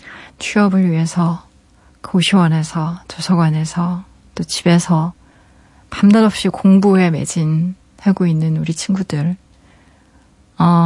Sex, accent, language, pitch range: female, native, Korean, 165-210 Hz